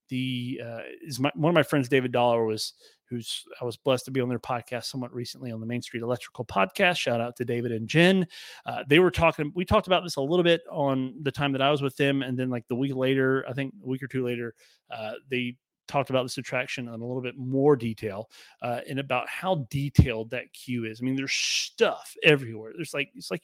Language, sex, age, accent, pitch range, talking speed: English, male, 30-49, American, 125-155 Hz, 245 wpm